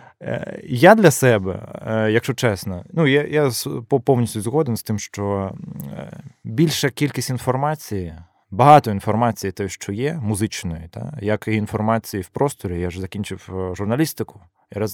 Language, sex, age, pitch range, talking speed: Ukrainian, male, 20-39, 100-125 Hz, 135 wpm